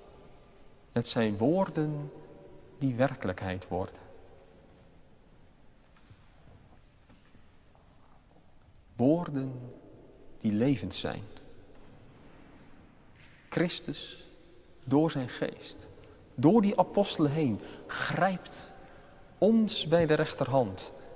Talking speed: 65 wpm